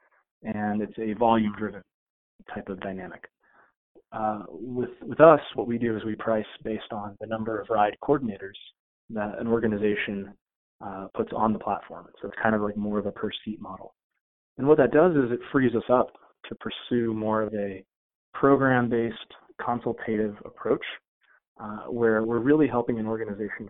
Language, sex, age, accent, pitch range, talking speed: English, male, 20-39, American, 105-115 Hz, 165 wpm